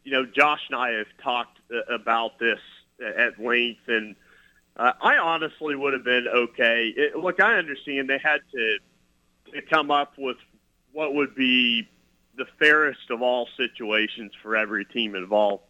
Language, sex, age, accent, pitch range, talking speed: English, male, 40-59, American, 110-140 Hz, 160 wpm